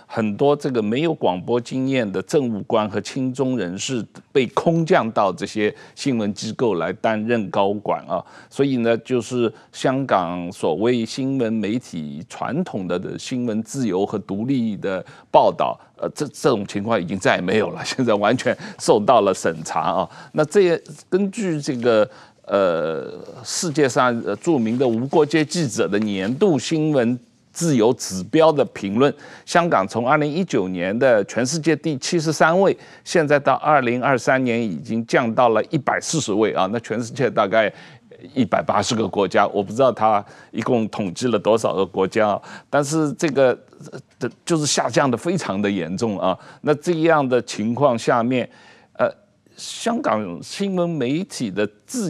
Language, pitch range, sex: Chinese, 110-155 Hz, male